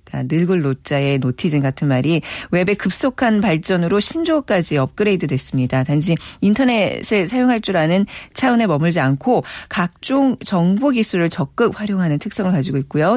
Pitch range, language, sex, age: 150-230 Hz, Korean, female, 40-59